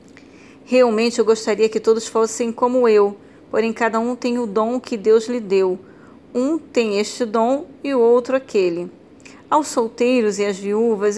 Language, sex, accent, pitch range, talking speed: Portuguese, female, Brazilian, 210-255 Hz, 165 wpm